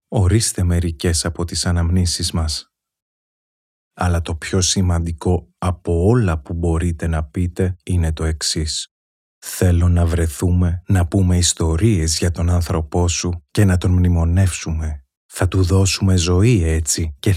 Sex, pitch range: male, 85-95 Hz